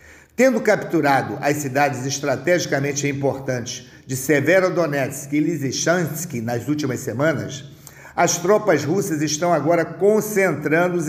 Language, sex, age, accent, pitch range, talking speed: Portuguese, male, 50-69, Brazilian, 145-185 Hz, 110 wpm